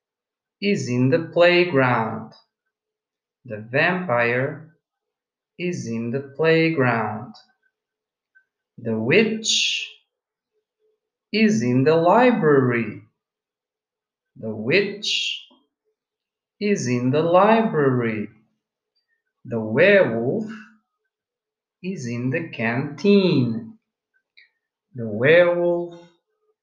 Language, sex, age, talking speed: English, male, 50-69, 70 wpm